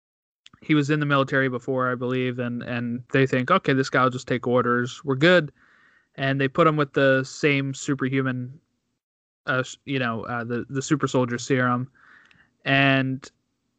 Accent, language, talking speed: American, English, 165 wpm